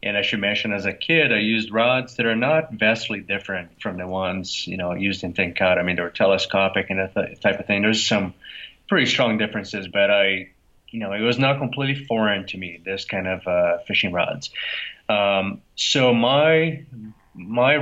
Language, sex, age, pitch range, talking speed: English, male, 30-49, 95-110 Hz, 205 wpm